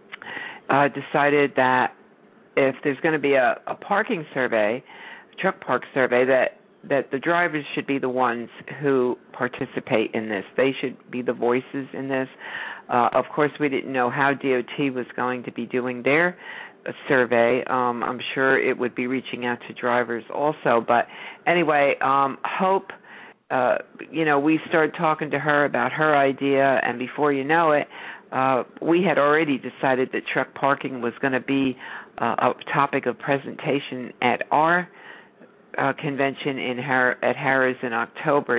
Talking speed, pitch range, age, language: 165 wpm, 130-155 Hz, 50-69, English